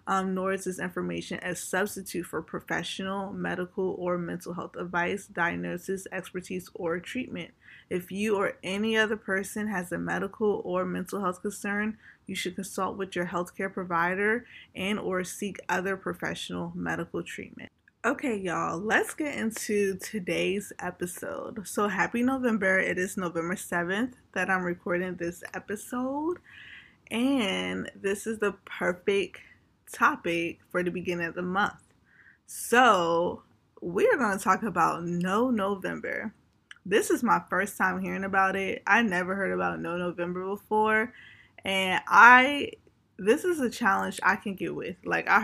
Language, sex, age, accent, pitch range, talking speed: English, female, 20-39, American, 180-215 Hz, 150 wpm